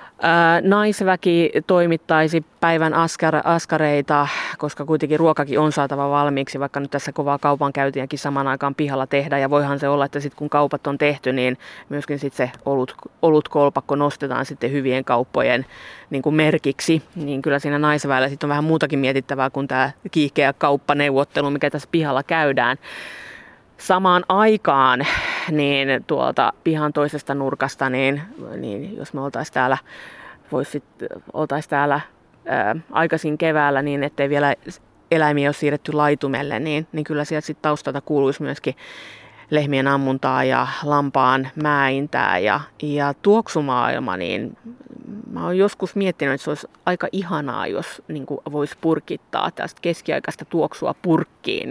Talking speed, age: 140 wpm, 30-49